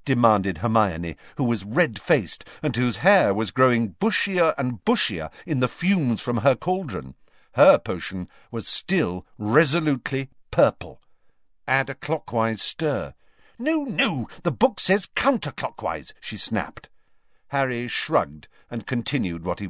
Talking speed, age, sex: 130 wpm, 50-69, male